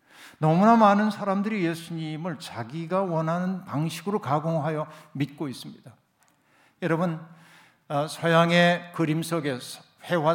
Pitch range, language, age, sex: 140-175 Hz, Korean, 60-79, male